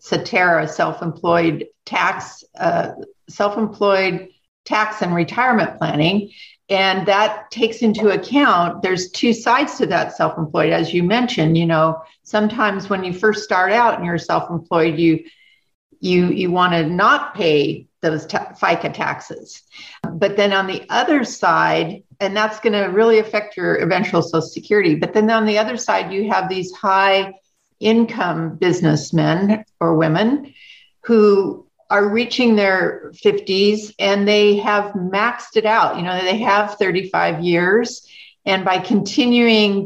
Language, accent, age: English, American, 50-69